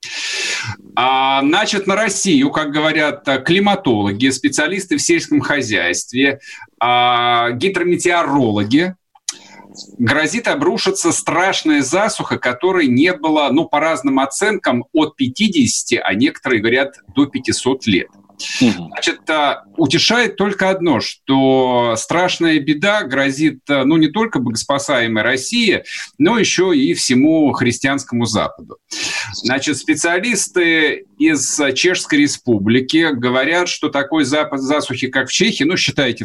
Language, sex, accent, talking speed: Russian, male, native, 105 wpm